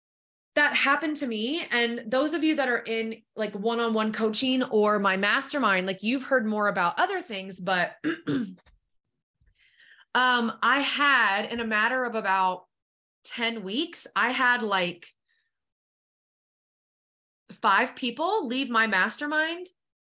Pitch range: 190-270 Hz